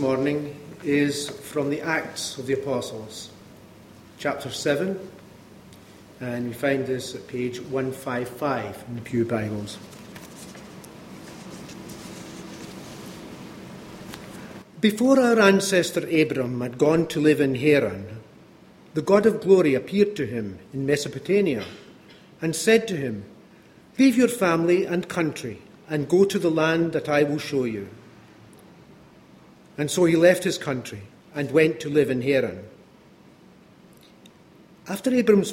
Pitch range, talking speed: 135-190 Hz, 125 wpm